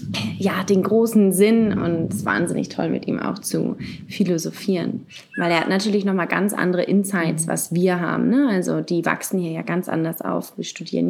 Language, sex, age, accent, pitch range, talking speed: German, female, 20-39, German, 180-215 Hz, 195 wpm